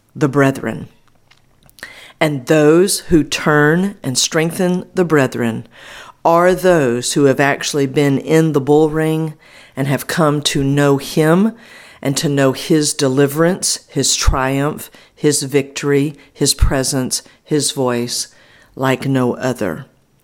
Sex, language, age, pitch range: female, English, 50-69, 135-165 Hz